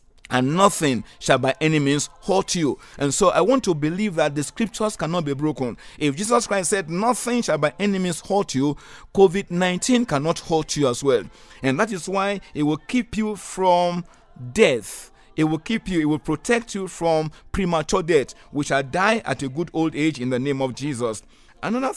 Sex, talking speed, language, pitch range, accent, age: male, 200 wpm, English, 140-195 Hz, Nigerian, 50-69